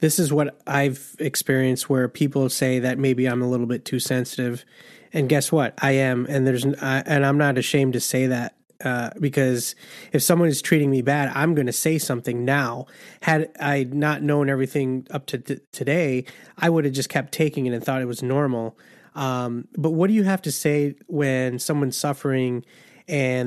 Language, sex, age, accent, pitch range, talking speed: English, male, 30-49, American, 125-145 Hz, 195 wpm